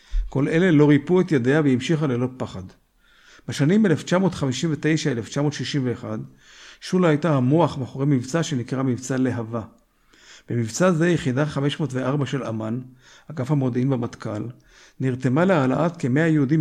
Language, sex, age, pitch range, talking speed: Hebrew, male, 50-69, 125-155 Hz, 120 wpm